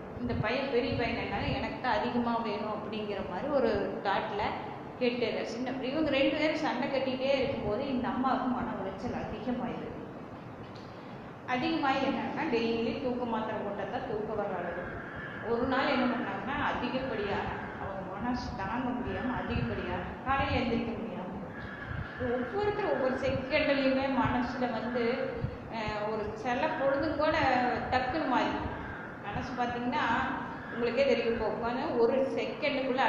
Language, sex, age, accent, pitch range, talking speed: Tamil, female, 20-39, native, 225-260 Hz, 120 wpm